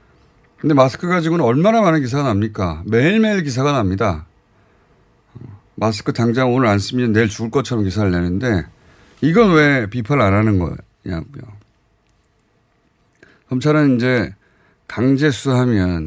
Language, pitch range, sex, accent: Korean, 100-145 Hz, male, native